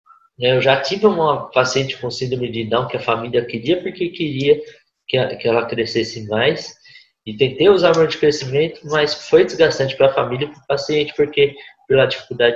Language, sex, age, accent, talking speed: Portuguese, male, 20-39, Brazilian, 180 wpm